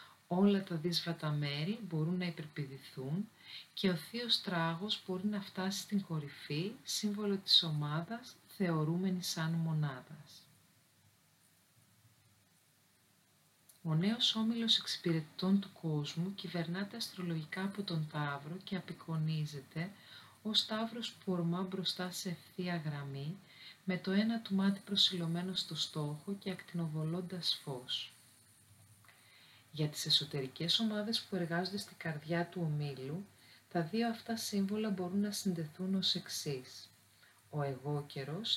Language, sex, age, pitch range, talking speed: Greek, female, 40-59, 150-195 Hz, 115 wpm